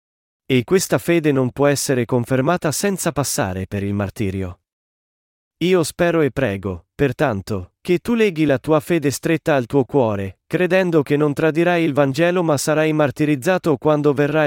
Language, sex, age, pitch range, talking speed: Italian, male, 40-59, 115-160 Hz, 160 wpm